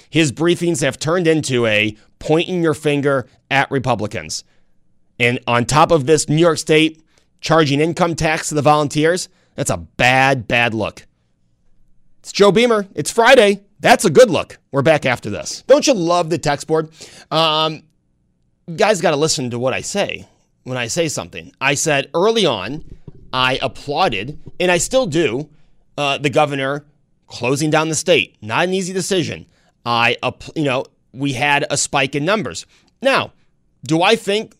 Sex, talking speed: male, 170 wpm